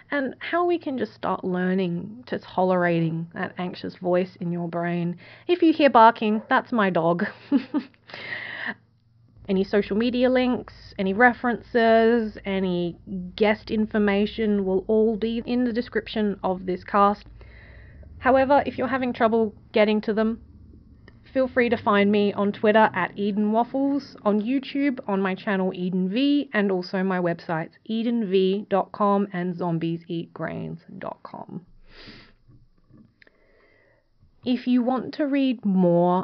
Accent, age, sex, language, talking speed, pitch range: Australian, 30-49, female, English, 130 wpm, 180-225 Hz